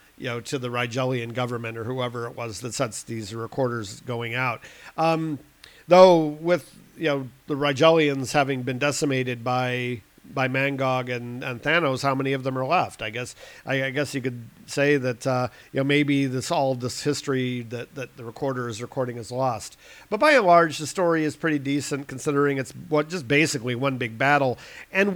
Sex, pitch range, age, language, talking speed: male, 125-155 Hz, 50-69, English, 195 wpm